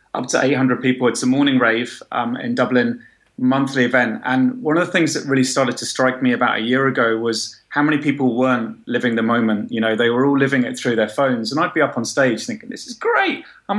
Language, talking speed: English, 250 wpm